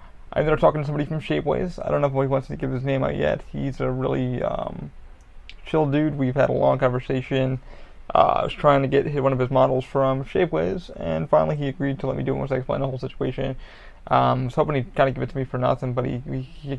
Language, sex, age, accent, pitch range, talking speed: English, male, 20-39, American, 125-145 Hz, 265 wpm